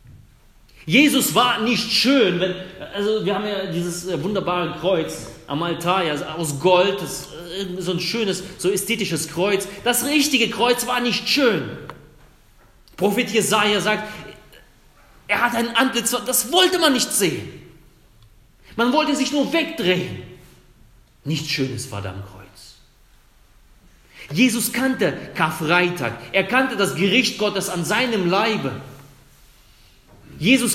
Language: German